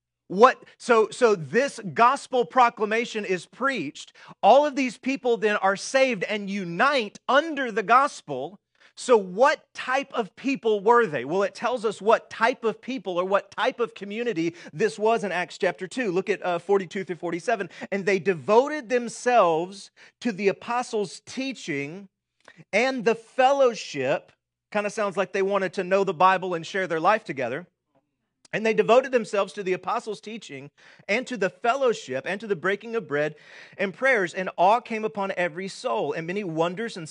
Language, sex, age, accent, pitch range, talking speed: English, male, 40-59, American, 170-230 Hz, 175 wpm